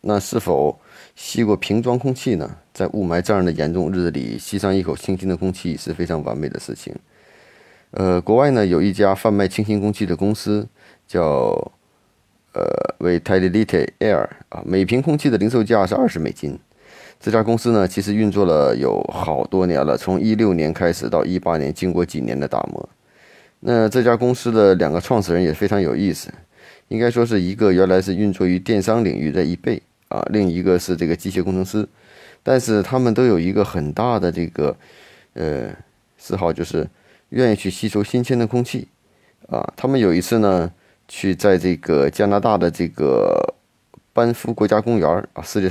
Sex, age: male, 30-49